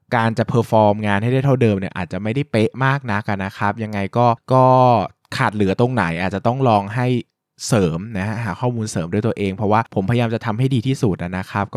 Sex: male